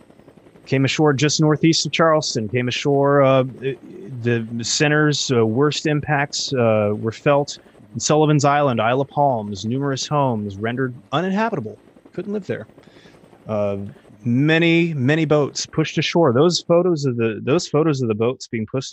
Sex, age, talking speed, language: male, 30-49, 150 wpm, English